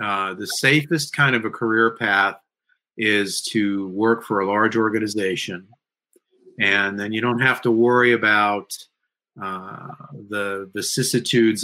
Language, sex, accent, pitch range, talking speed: English, male, American, 105-135 Hz, 140 wpm